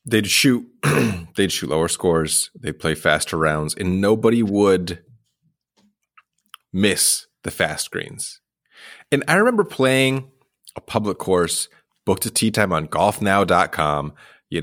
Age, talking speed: 30-49, 130 wpm